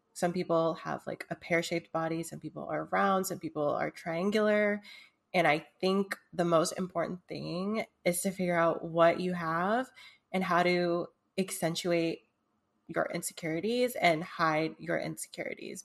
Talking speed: 150 wpm